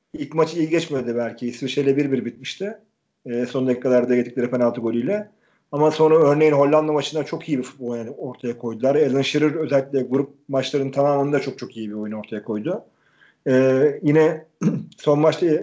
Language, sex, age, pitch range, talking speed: Turkish, male, 40-59, 130-160 Hz, 165 wpm